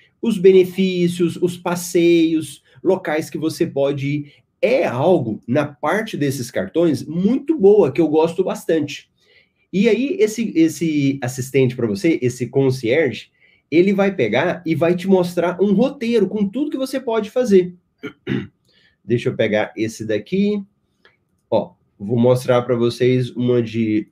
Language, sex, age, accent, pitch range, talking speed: Portuguese, male, 30-49, Brazilian, 125-190 Hz, 140 wpm